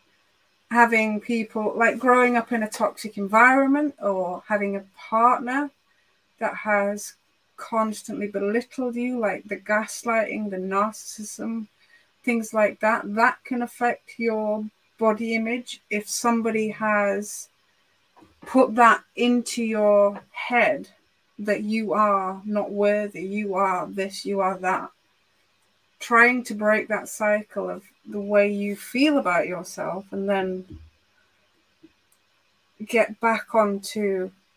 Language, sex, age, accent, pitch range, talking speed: English, female, 30-49, British, 205-235 Hz, 120 wpm